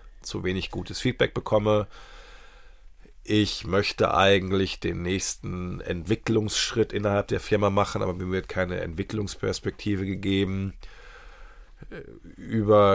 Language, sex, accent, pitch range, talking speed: English, male, German, 95-110 Hz, 100 wpm